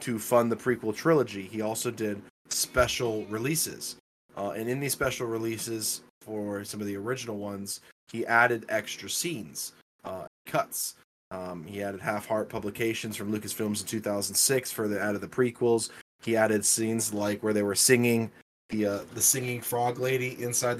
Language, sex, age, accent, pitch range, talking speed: English, male, 20-39, American, 100-115 Hz, 165 wpm